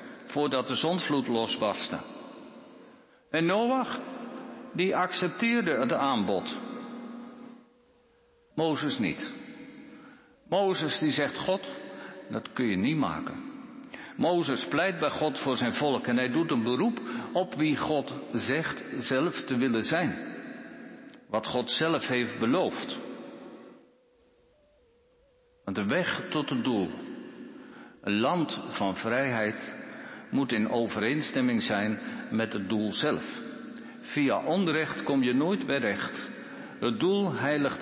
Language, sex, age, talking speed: Dutch, male, 60-79, 115 wpm